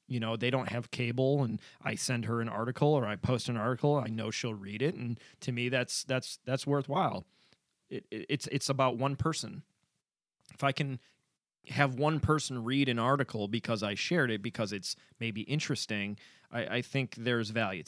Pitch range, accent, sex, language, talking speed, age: 115-150 Hz, American, male, English, 195 wpm, 20-39